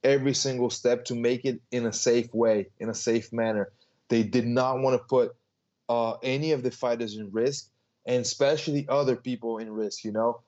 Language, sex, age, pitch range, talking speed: English, male, 20-39, 115-130 Hz, 200 wpm